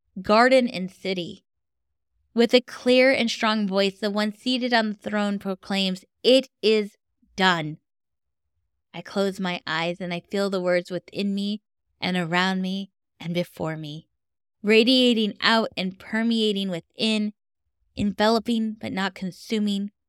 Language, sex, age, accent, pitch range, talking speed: English, female, 10-29, American, 175-215 Hz, 135 wpm